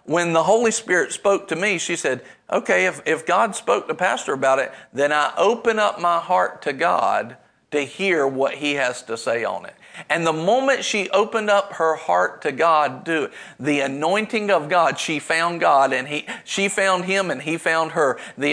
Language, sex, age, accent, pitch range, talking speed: English, male, 50-69, American, 150-205 Hz, 205 wpm